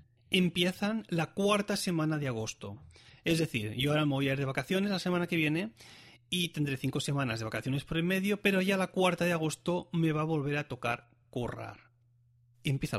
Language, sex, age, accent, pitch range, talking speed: Spanish, male, 30-49, Spanish, 120-170 Hz, 200 wpm